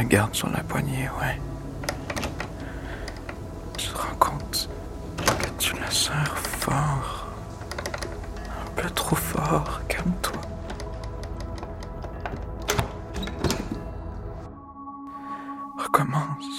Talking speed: 70 wpm